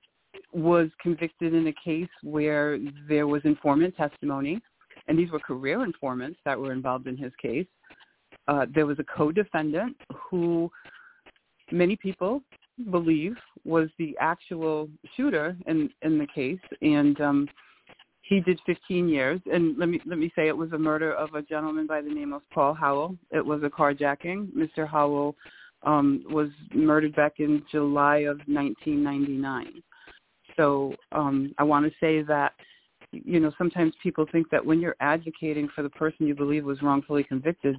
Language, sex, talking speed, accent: English, female, 160 wpm, American